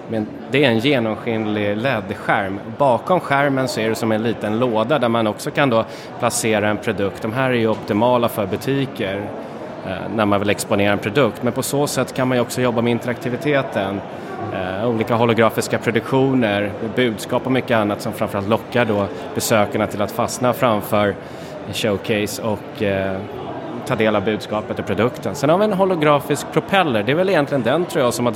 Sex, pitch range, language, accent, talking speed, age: male, 110-140 Hz, Swedish, native, 190 wpm, 30-49